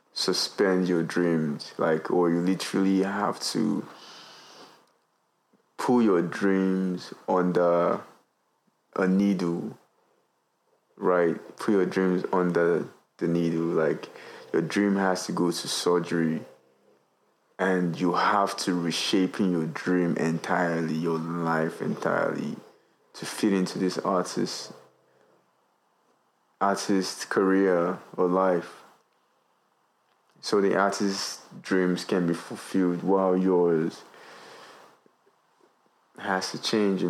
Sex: male